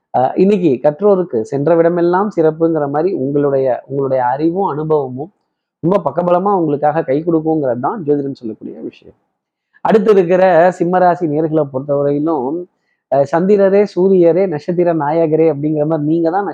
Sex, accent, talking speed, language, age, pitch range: male, native, 115 wpm, Tamil, 20-39, 145-175 Hz